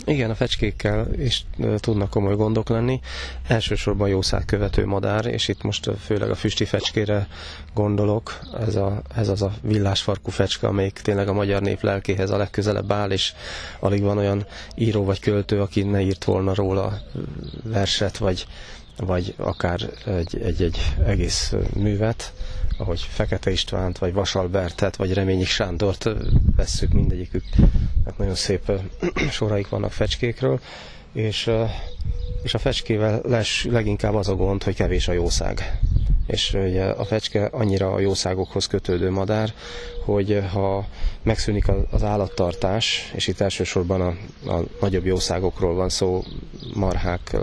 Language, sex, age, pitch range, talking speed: Hungarian, male, 20-39, 95-105 Hz, 135 wpm